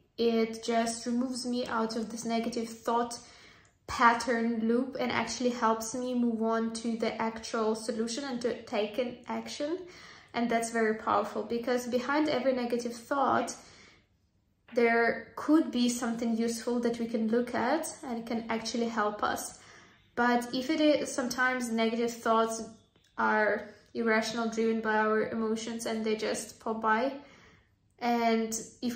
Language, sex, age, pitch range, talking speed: English, female, 20-39, 225-250 Hz, 145 wpm